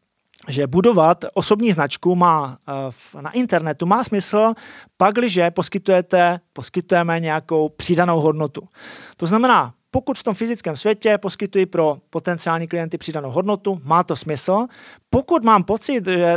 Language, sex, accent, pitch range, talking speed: Czech, male, native, 170-210 Hz, 125 wpm